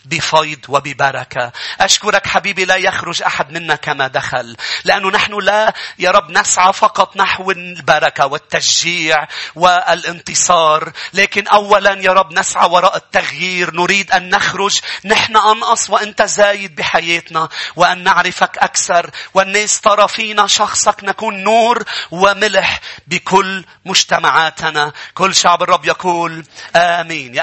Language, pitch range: English, 165-195 Hz